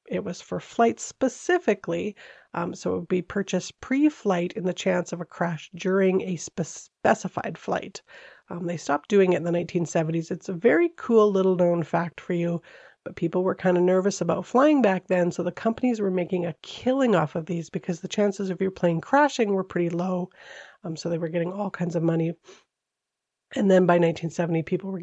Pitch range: 170-200 Hz